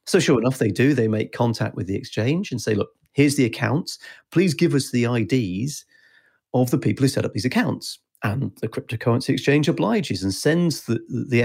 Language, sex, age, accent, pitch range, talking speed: English, male, 40-59, British, 110-150 Hz, 205 wpm